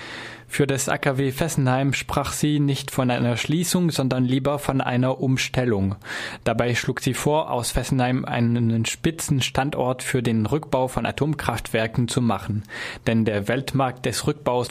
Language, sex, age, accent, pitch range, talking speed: German, male, 20-39, German, 120-140 Hz, 145 wpm